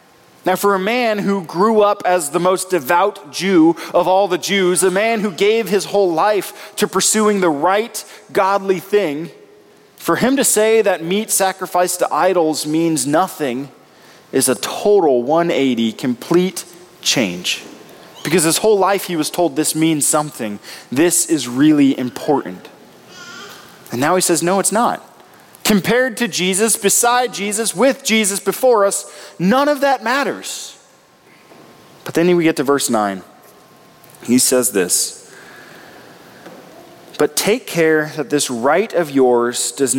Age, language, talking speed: 20-39, English, 150 wpm